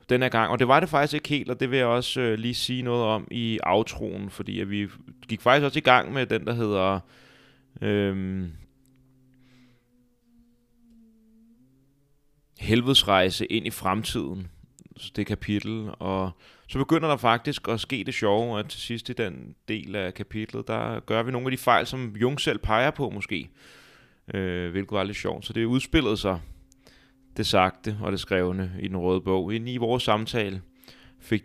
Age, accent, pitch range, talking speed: 30-49, native, 95-125 Hz, 175 wpm